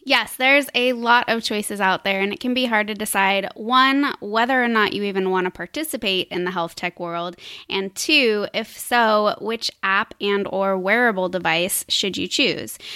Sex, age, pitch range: female, 20-39, 195-235 Hz